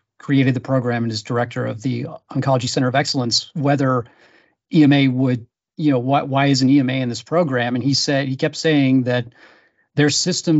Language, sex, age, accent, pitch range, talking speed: English, male, 40-59, American, 130-150 Hz, 190 wpm